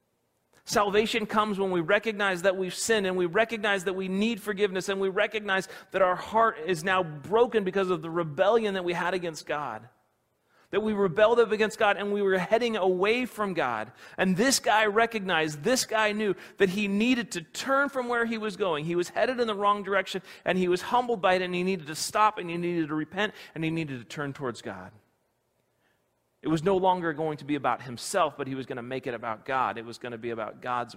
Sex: male